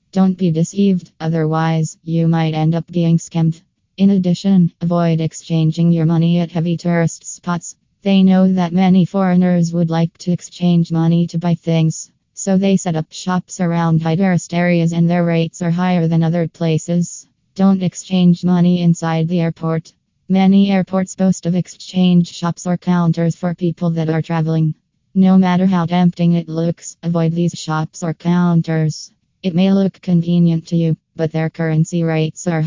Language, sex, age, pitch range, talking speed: Malay, female, 20-39, 160-180 Hz, 165 wpm